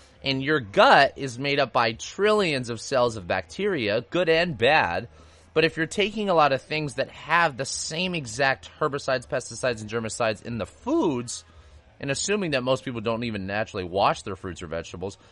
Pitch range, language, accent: 95-140 Hz, English, American